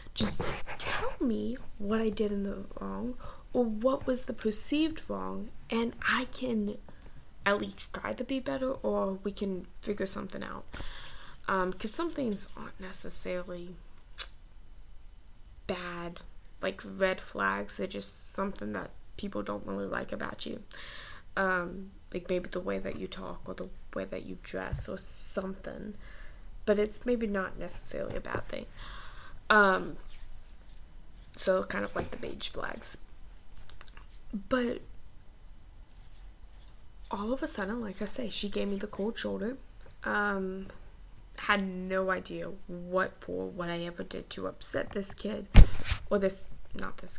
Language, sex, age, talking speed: English, female, 10-29, 145 wpm